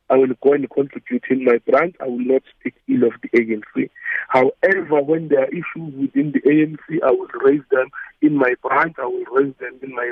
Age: 50-69